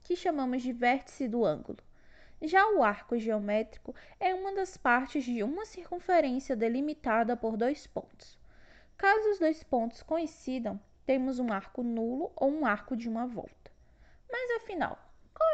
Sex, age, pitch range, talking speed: female, 10-29, 230-325 Hz, 150 wpm